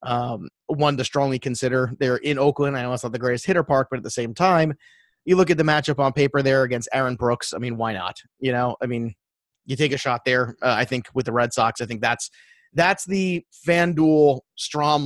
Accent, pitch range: American, 120-155 Hz